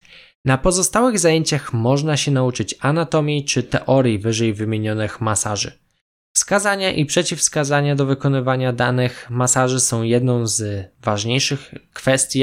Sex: male